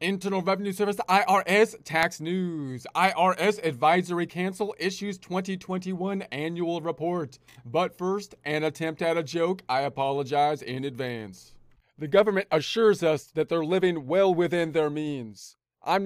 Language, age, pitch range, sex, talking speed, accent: English, 30-49, 155-185 Hz, male, 135 wpm, American